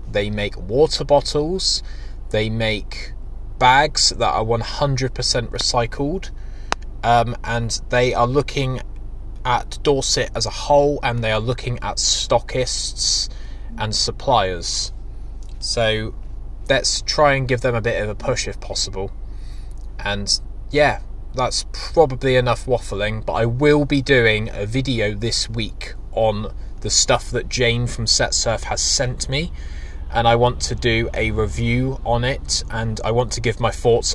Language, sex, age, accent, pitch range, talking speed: English, male, 20-39, British, 105-125 Hz, 145 wpm